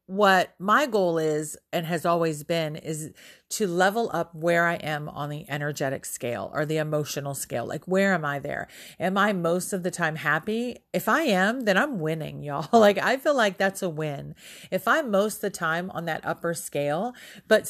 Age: 40-59